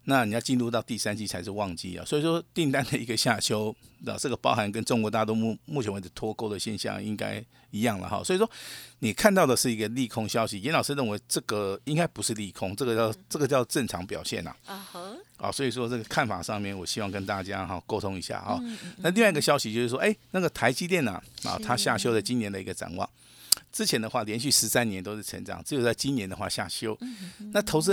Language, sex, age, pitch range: Chinese, male, 50-69, 100-130 Hz